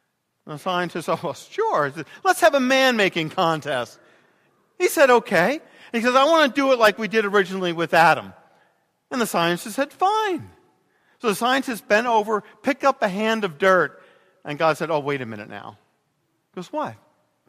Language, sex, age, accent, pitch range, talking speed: English, male, 40-59, American, 150-230 Hz, 195 wpm